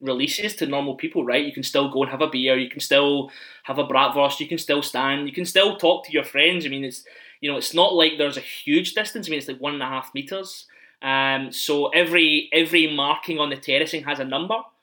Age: 20-39